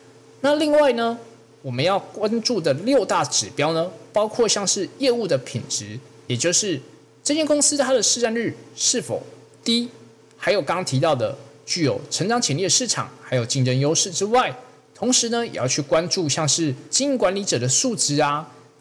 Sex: male